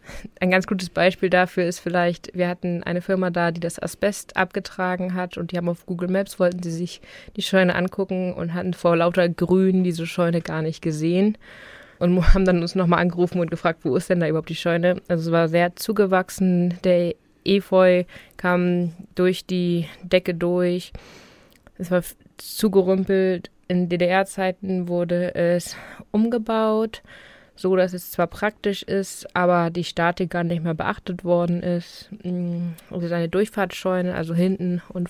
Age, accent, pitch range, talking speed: 20-39, German, 175-190 Hz, 165 wpm